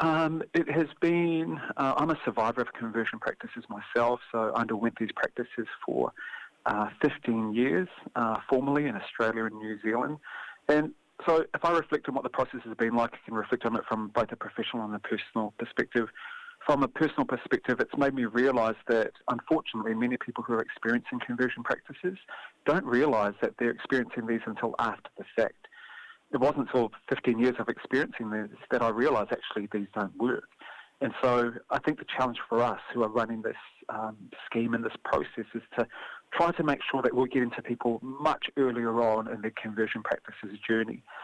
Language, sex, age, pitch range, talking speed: English, male, 40-59, 115-140 Hz, 190 wpm